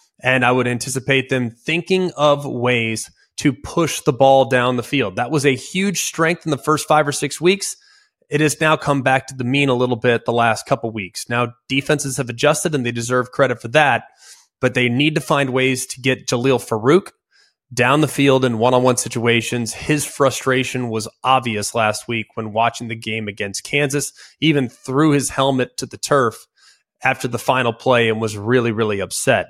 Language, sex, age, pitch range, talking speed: English, male, 20-39, 120-145 Hz, 195 wpm